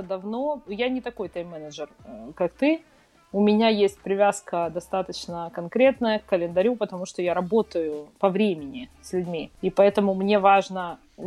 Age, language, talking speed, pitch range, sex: 20-39, Ukrainian, 150 wpm, 180-220 Hz, female